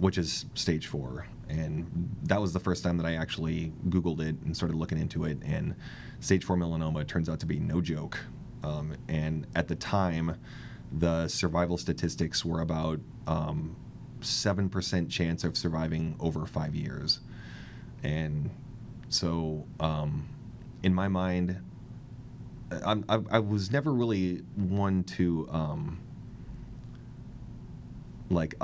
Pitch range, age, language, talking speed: 80-100 Hz, 30-49, English, 135 wpm